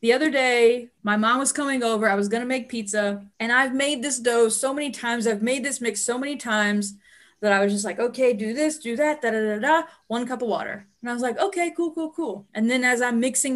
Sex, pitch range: female, 210-265 Hz